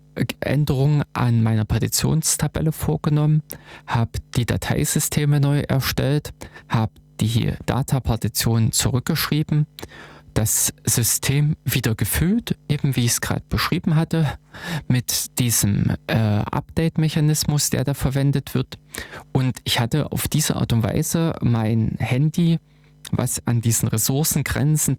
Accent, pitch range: German, 115-145 Hz